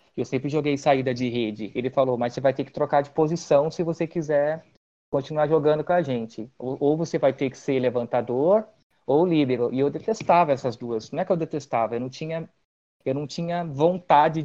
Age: 20-39